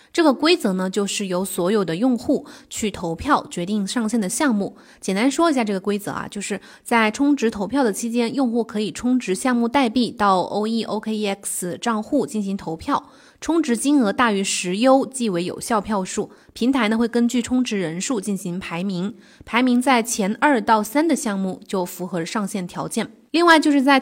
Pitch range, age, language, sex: 200-265 Hz, 20-39, Chinese, female